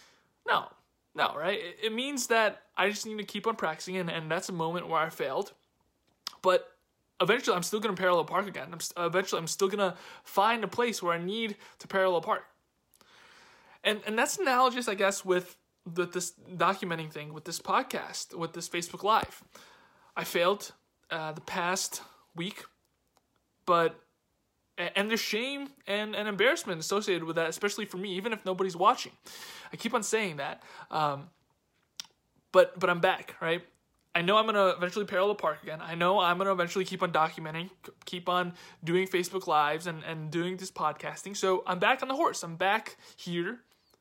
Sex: male